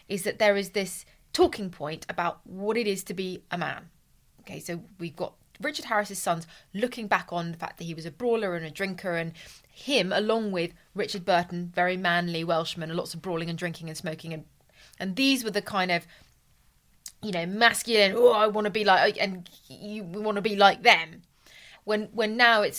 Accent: British